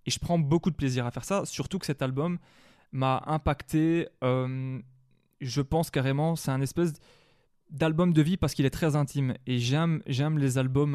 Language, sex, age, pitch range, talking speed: French, male, 20-39, 130-155 Hz, 190 wpm